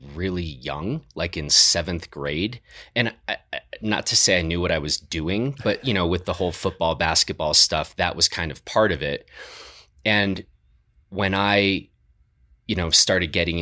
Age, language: 30-49, English